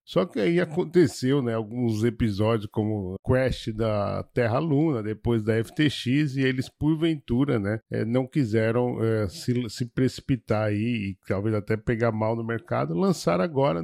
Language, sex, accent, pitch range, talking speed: Portuguese, male, Brazilian, 115-150 Hz, 155 wpm